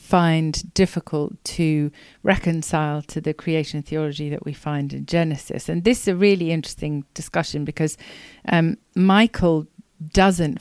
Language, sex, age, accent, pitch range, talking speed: English, female, 50-69, British, 150-185 Hz, 140 wpm